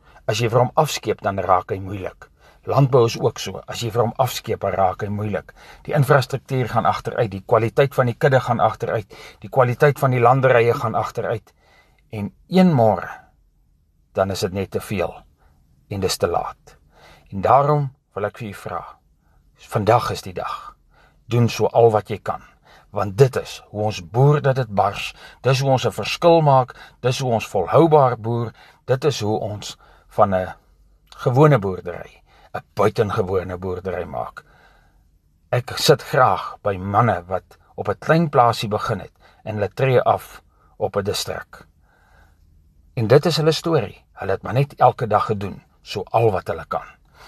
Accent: Dutch